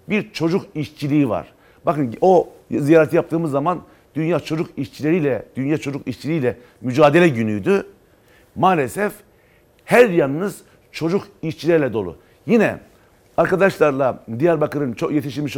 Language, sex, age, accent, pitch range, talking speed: Turkish, male, 50-69, native, 125-165 Hz, 110 wpm